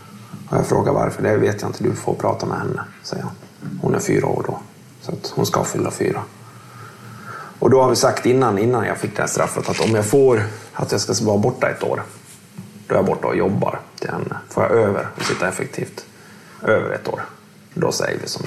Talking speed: 225 wpm